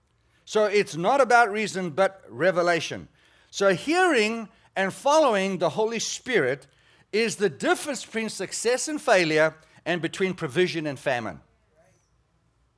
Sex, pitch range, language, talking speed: male, 150-190 Hz, English, 120 wpm